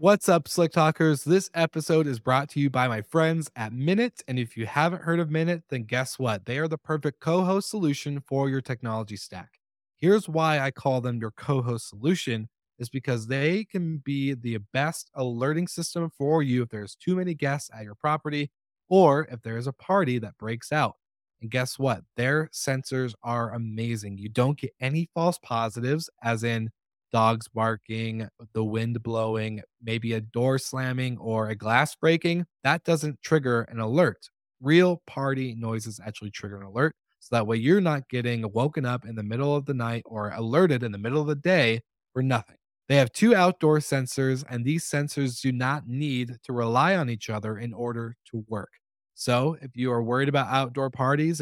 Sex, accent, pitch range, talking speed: male, American, 115-155 Hz, 190 wpm